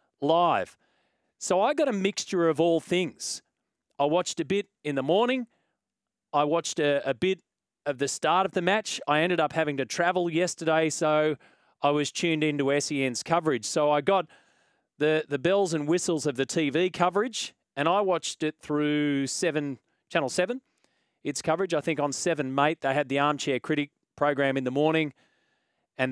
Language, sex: English, male